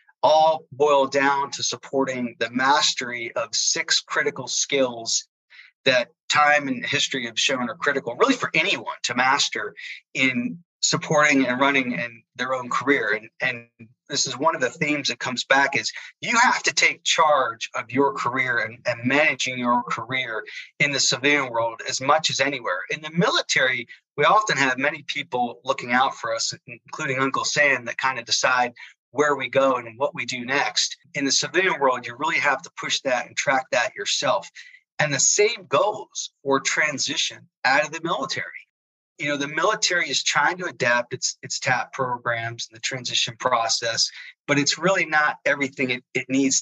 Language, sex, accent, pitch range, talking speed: English, male, American, 125-150 Hz, 180 wpm